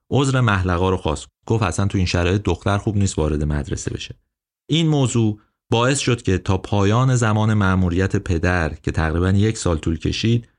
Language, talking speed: Persian, 175 wpm